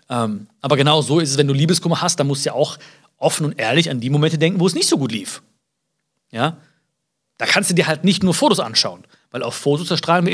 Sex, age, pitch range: male, 40-59, 145-185 Hz